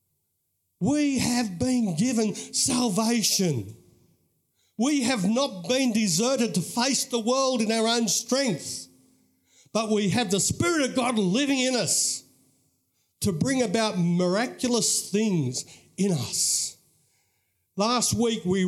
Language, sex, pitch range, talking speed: English, male, 140-230 Hz, 120 wpm